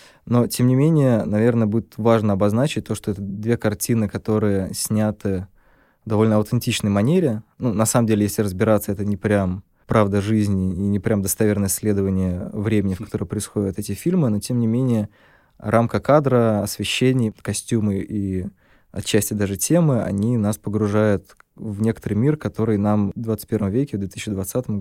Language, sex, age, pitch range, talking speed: Russian, male, 20-39, 100-115 Hz, 160 wpm